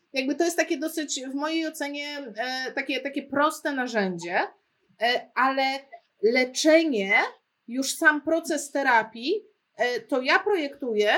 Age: 30-49